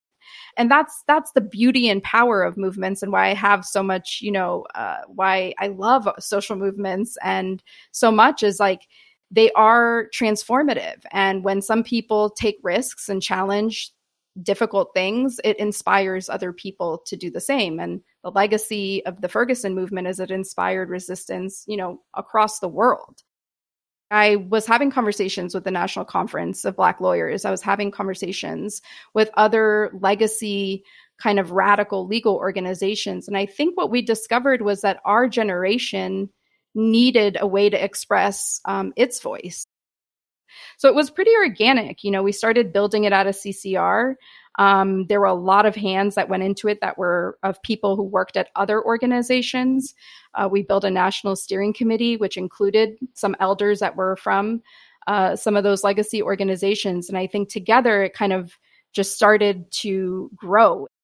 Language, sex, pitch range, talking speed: English, female, 190-225 Hz, 170 wpm